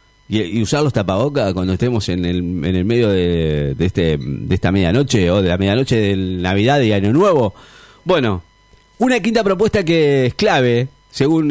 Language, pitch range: Spanish, 110-145 Hz